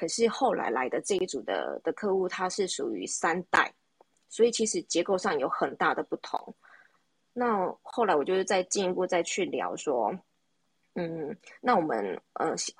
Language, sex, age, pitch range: Chinese, female, 20-39, 165-225 Hz